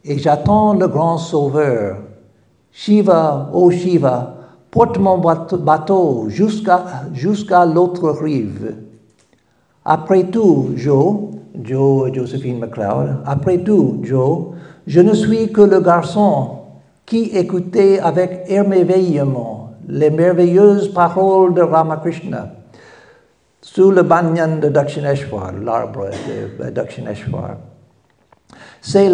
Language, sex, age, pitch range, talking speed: French, male, 60-79, 145-195 Hz, 100 wpm